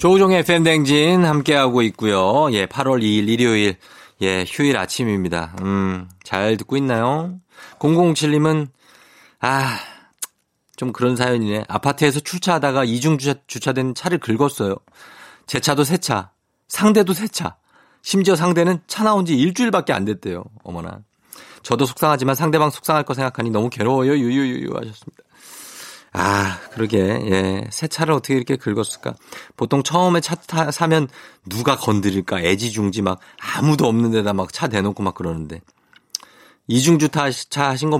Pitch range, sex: 105-160 Hz, male